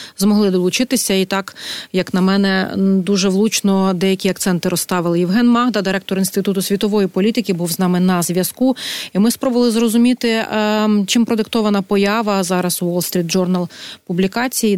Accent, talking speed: native, 145 wpm